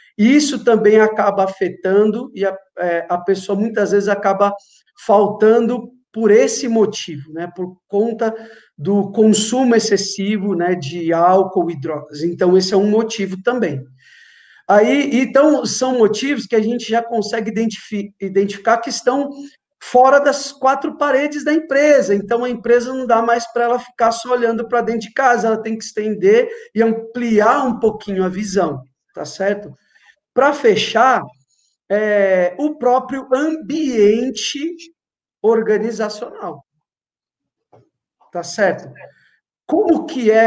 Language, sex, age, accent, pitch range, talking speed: Portuguese, male, 50-69, Brazilian, 195-250 Hz, 135 wpm